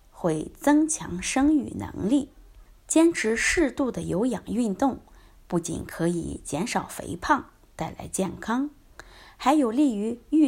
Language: Chinese